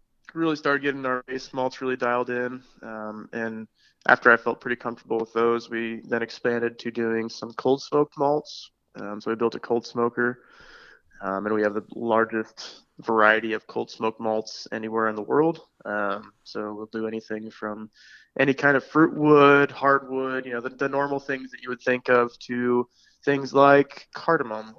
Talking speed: 185 wpm